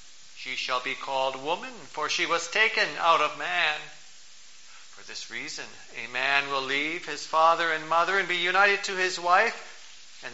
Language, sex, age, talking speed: English, male, 40-59, 175 wpm